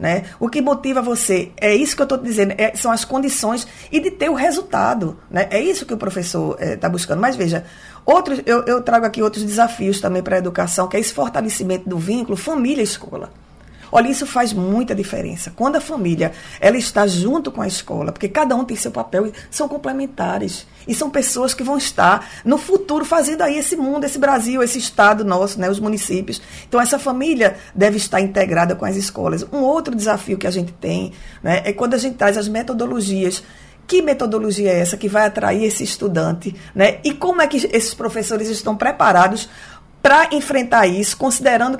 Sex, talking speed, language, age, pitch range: female, 195 wpm, Portuguese, 20-39, 195-260 Hz